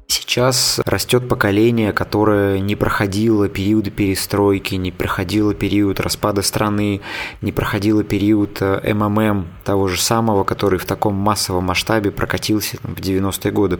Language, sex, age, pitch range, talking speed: Russian, male, 20-39, 100-120 Hz, 125 wpm